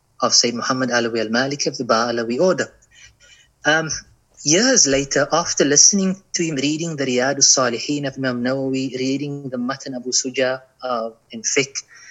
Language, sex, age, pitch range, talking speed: English, male, 30-49, 130-160 Hz, 165 wpm